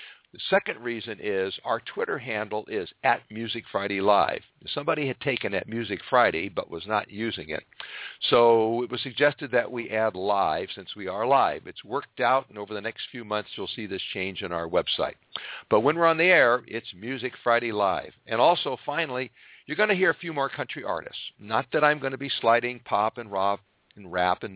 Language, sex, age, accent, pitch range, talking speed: English, male, 60-79, American, 105-135 Hz, 210 wpm